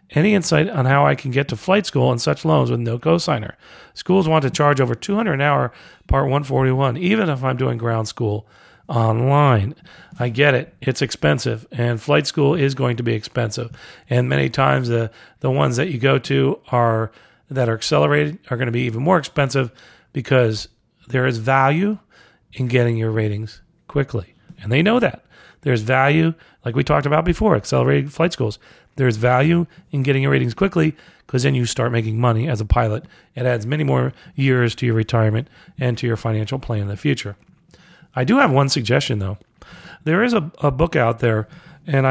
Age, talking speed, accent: 40-59, 195 wpm, American